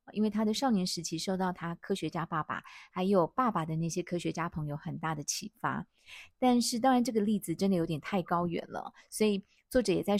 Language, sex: Chinese, female